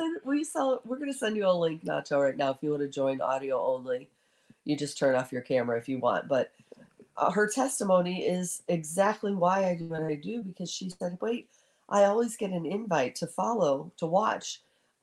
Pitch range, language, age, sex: 150-200 Hz, English, 40-59, female